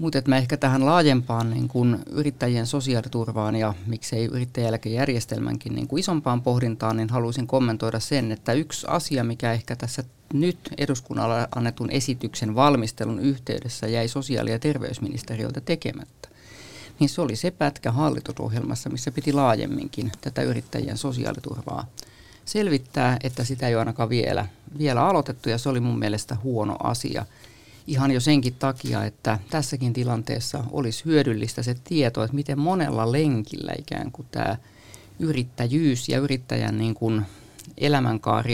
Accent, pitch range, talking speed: native, 115-140 Hz, 135 wpm